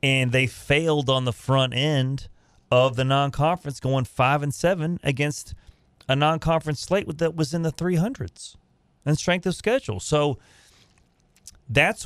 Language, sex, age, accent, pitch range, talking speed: English, male, 30-49, American, 115-155 Hz, 145 wpm